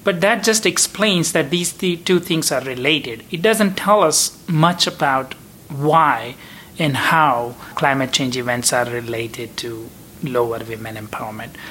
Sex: male